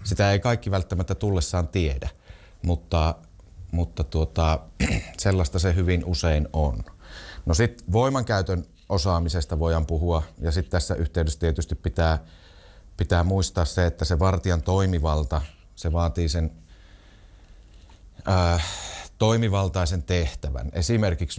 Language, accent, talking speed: Finnish, native, 110 wpm